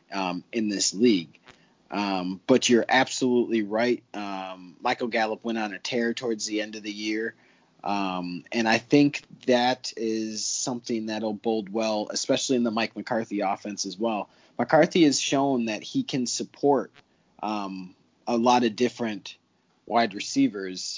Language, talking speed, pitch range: English, 155 wpm, 105-125 Hz